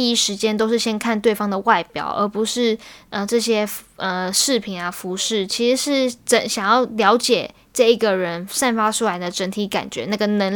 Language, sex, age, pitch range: Chinese, female, 10-29, 200-255 Hz